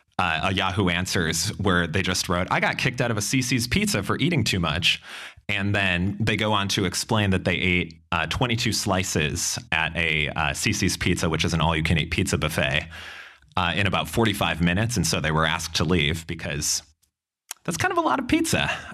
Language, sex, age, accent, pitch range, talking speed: English, male, 30-49, American, 85-105 Hz, 210 wpm